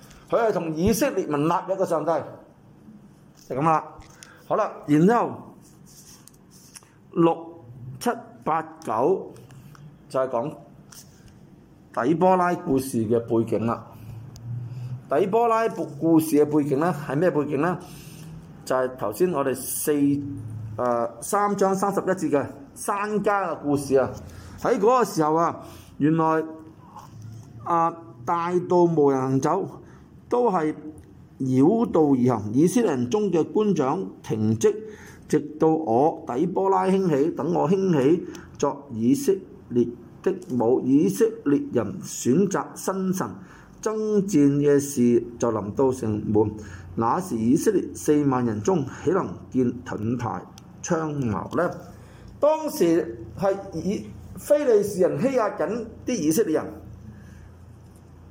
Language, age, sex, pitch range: Chinese, 50-69, male, 120-180 Hz